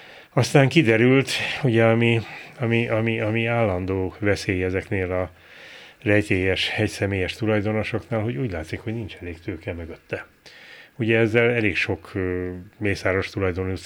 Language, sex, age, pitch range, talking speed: Hungarian, male, 30-49, 90-115 Hz, 115 wpm